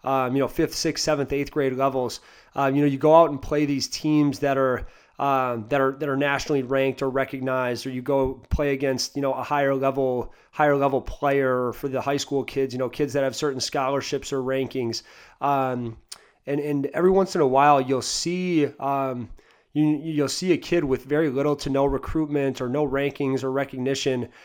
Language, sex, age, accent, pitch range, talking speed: English, male, 30-49, American, 130-145 Hz, 205 wpm